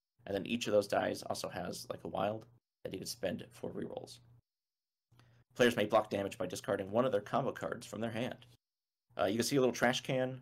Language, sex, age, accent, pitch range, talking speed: English, male, 30-49, American, 105-120 Hz, 225 wpm